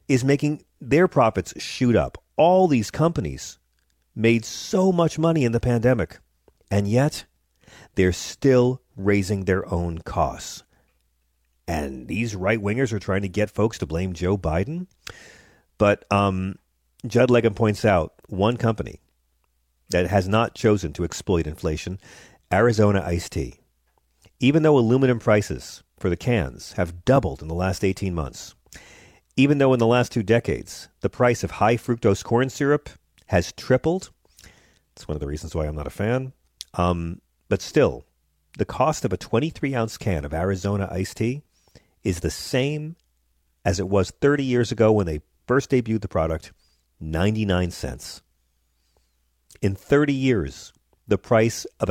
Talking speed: 150 wpm